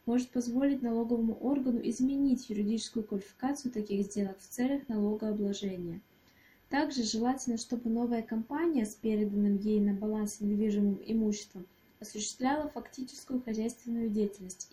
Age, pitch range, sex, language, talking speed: 20-39, 215-250 Hz, female, Russian, 115 wpm